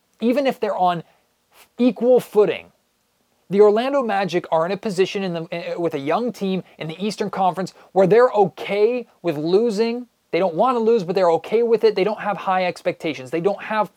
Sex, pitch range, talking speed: male, 170-210 Hz, 190 wpm